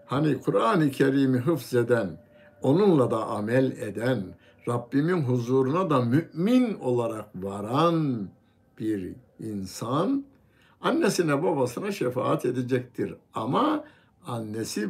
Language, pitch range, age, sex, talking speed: Turkish, 110-165 Hz, 60-79, male, 95 wpm